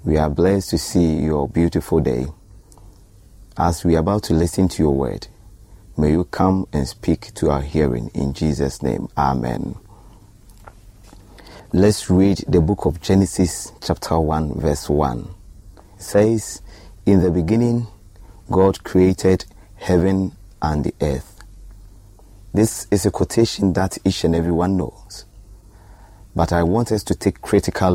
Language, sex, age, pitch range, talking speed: English, male, 30-49, 85-100 Hz, 145 wpm